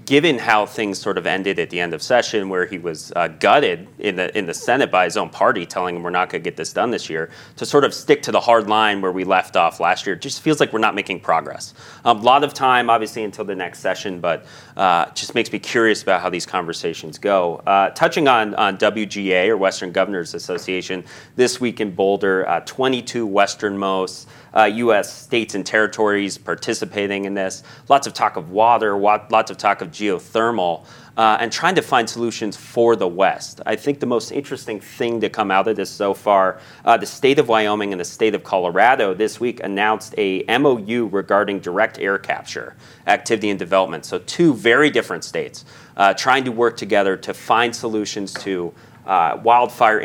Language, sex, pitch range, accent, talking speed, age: English, male, 95-115 Hz, American, 205 wpm, 30-49